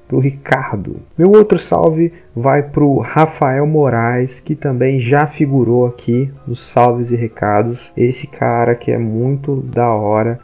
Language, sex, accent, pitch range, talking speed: Portuguese, male, Brazilian, 120-140 Hz, 155 wpm